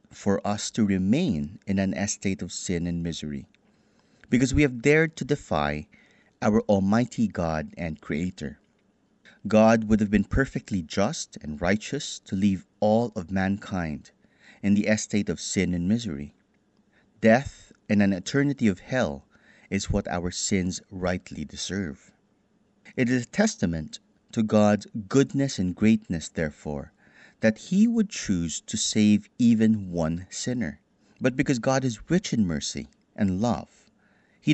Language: English